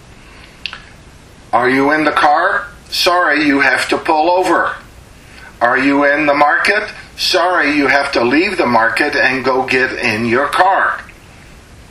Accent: American